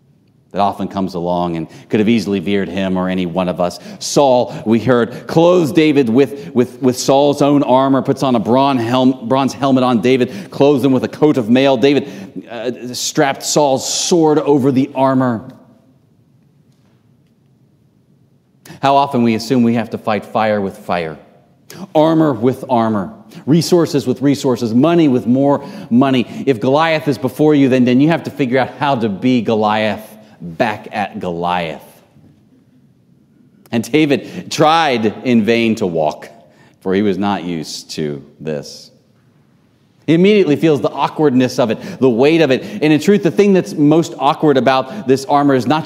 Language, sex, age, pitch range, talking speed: English, male, 40-59, 115-150 Hz, 165 wpm